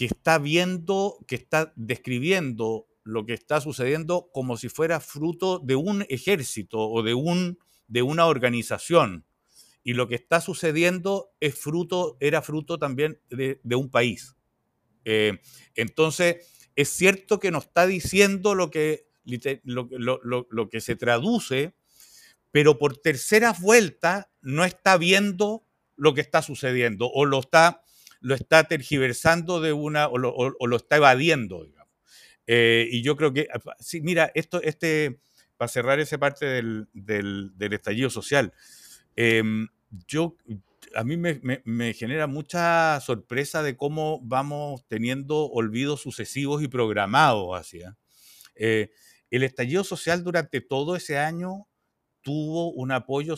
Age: 50-69